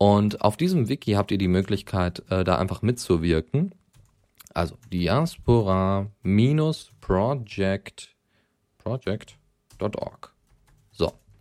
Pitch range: 95-120 Hz